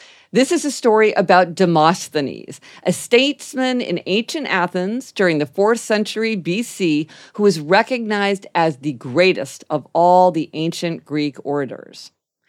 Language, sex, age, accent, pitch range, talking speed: English, female, 50-69, American, 165-245 Hz, 135 wpm